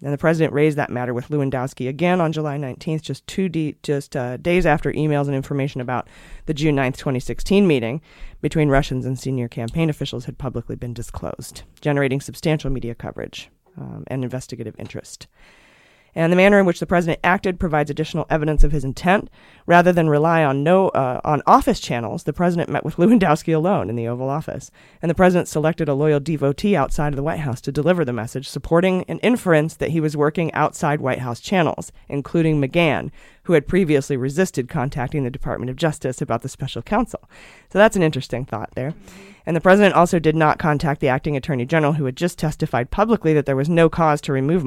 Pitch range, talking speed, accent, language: 130-165 Hz, 200 wpm, American, English